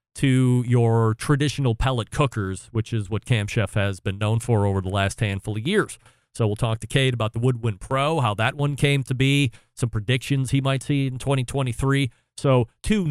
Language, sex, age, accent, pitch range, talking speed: English, male, 40-59, American, 115-145 Hz, 200 wpm